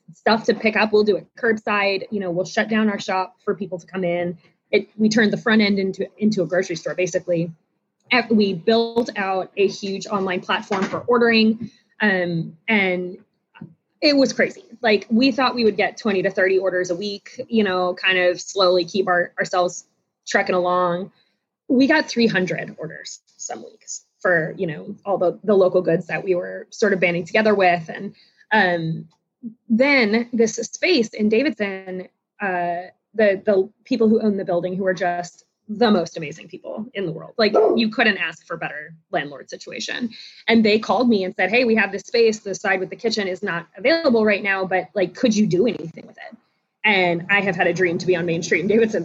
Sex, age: female, 20-39